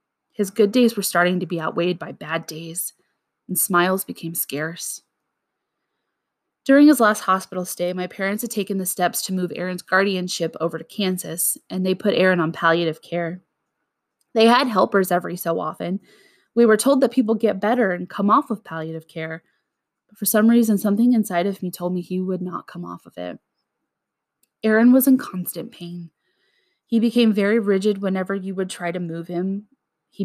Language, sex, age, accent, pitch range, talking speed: English, female, 20-39, American, 180-225 Hz, 185 wpm